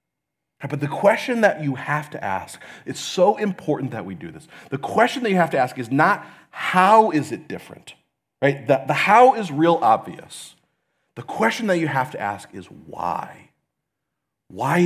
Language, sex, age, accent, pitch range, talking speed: English, male, 40-59, American, 130-175 Hz, 180 wpm